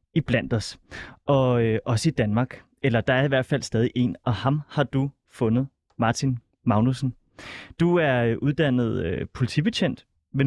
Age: 30-49